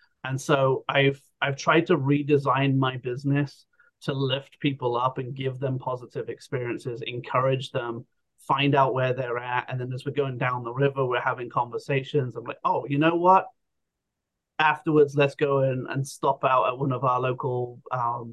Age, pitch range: 30-49, 130-150 Hz